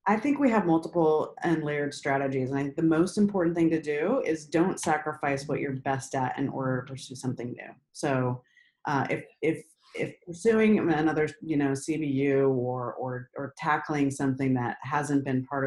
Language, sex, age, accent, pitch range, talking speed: English, female, 30-49, American, 135-160 Hz, 180 wpm